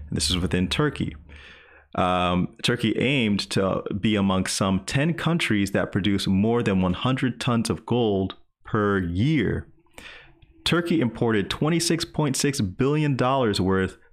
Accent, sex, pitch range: American, male, 90-115 Hz